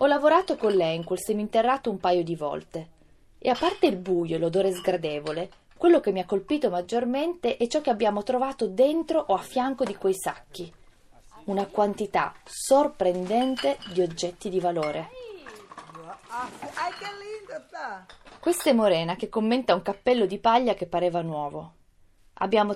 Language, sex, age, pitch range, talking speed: Italian, female, 20-39, 175-250 Hz, 150 wpm